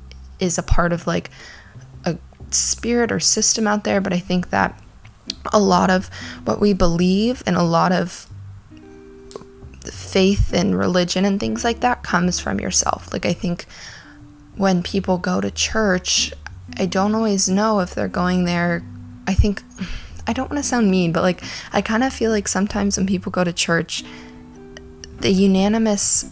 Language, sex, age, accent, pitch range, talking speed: English, female, 20-39, American, 165-195 Hz, 165 wpm